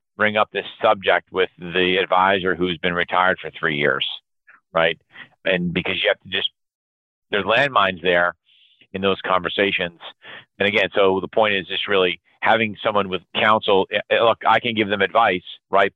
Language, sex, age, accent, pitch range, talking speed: English, male, 40-59, American, 90-105 Hz, 170 wpm